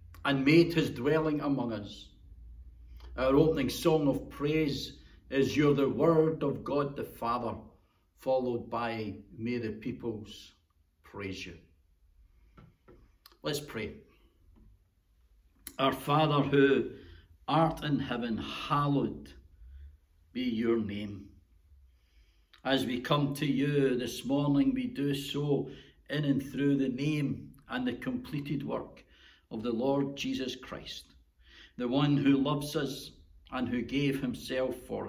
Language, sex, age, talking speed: English, male, 60-79, 125 wpm